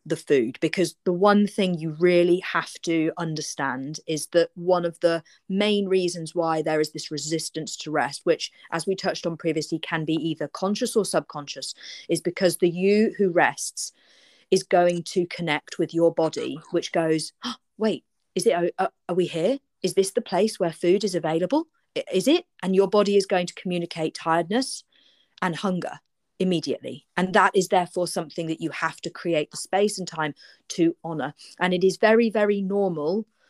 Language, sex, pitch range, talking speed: English, female, 165-205 Hz, 185 wpm